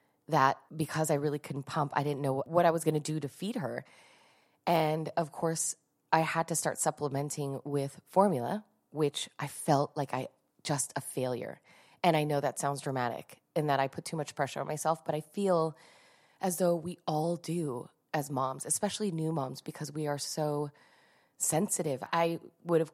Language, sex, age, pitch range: English, female, 20-39, 140-170 Hz